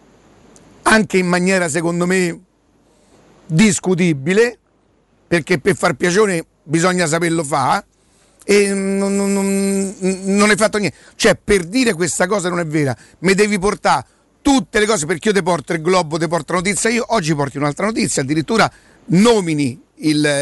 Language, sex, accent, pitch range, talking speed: Italian, male, native, 165-210 Hz, 145 wpm